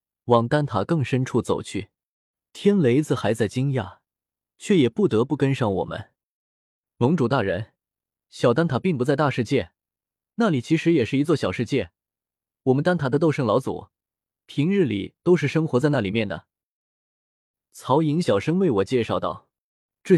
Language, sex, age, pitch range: Chinese, male, 20-39, 110-160 Hz